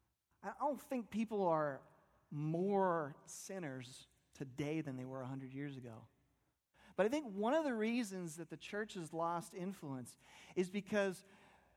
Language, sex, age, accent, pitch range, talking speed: English, male, 40-59, American, 135-190 Hz, 150 wpm